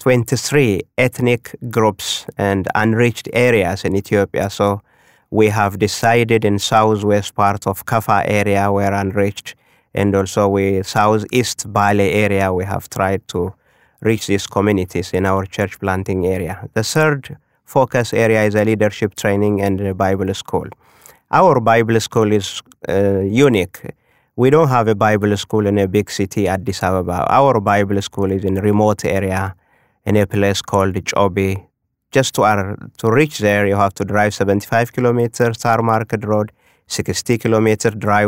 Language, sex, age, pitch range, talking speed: English, male, 30-49, 100-110 Hz, 155 wpm